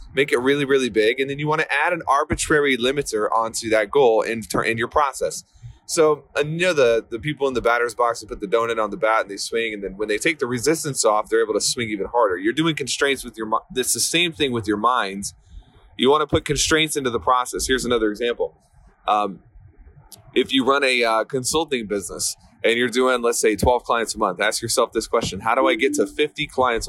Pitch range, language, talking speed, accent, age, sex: 110-155 Hz, English, 245 wpm, American, 20-39, male